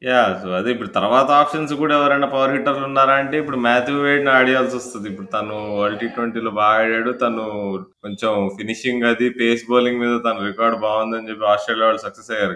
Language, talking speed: Telugu, 190 wpm